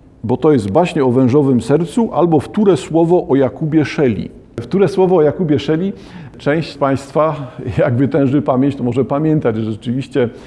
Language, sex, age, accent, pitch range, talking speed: Polish, male, 50-69, native, 115-140 Hz, 165 wpm